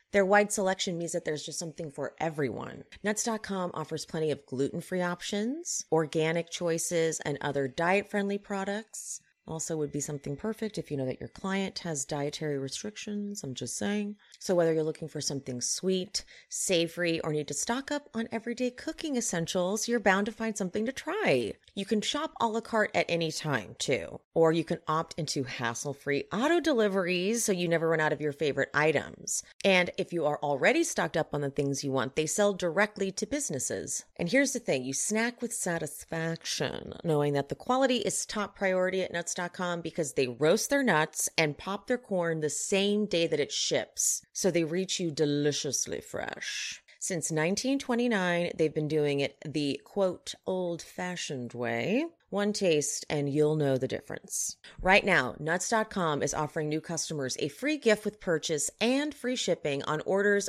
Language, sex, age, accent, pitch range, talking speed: English, female, 30-49, American, 150-205 Hz, 180 wpm